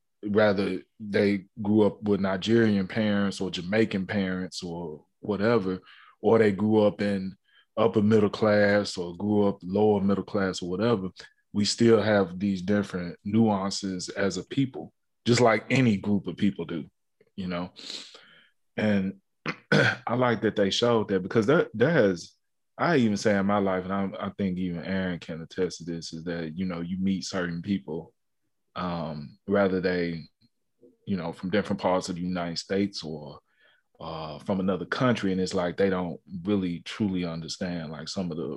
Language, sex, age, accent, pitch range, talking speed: English, male, 20-39, American, 90-105 Hz, 170 wpm